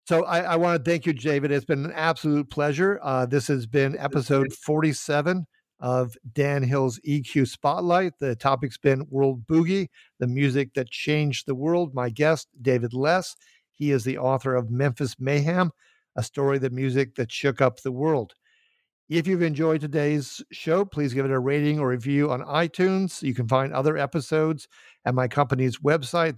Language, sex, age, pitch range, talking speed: English, male, 50-69, 130-155 Hz, 180 wpm